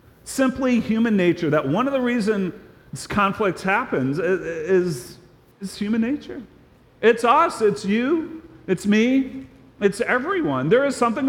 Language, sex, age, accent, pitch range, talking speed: English, male, 40-59, American, 150-210 Hz, 140 wpm